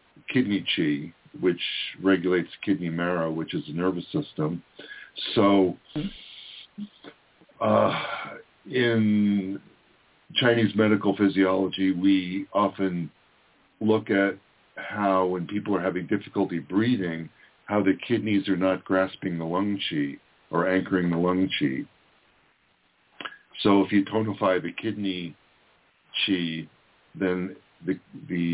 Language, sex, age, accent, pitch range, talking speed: English, male, 50-69, American, 85-100 Hz, 110 wpm